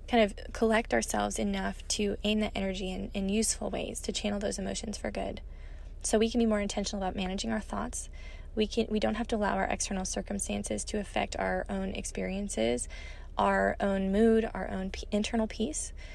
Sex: female